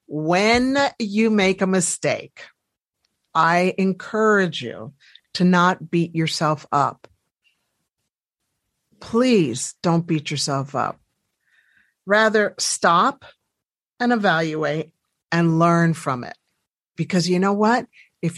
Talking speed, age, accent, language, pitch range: 100 wpm, 50-69, American, English, 160-210 Hz